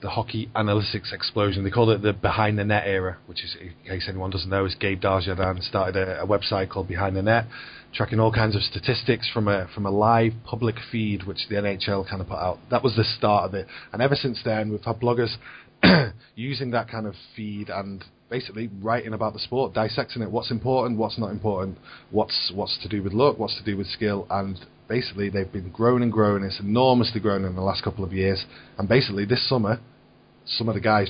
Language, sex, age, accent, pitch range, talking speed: English, male, 30-49, British, 95-115 Hz, 220 wpm